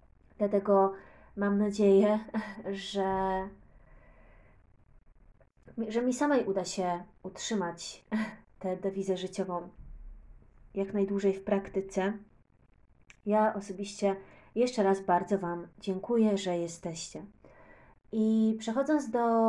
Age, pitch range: 20-39, 195-220 Hz